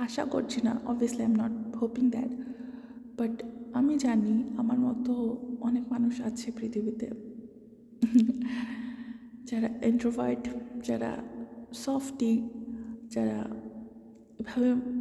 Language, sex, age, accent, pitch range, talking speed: Bengali, female, 20-39, native, 230-250 Hz, 100 wpm